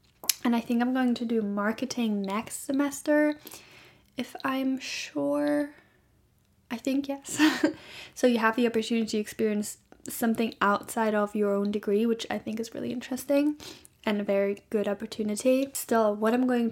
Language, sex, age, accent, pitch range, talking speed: English, female, 10-29, American, 210-265 Hz, 160 wpm